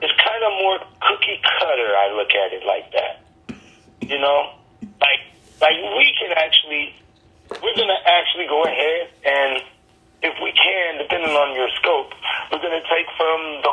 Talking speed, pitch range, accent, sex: 160 wpm, 130-205 Hz, American, male